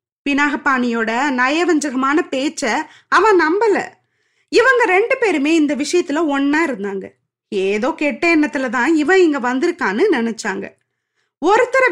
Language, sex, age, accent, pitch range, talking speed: Tamil, female, 20-39, native, 265-355 Hz, 105 wpm